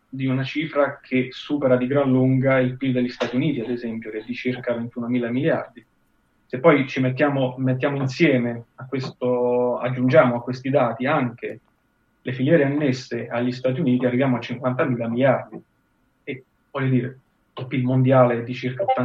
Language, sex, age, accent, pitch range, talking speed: Italian, male, 30-49, native, 120-135 Hz, 165 wpm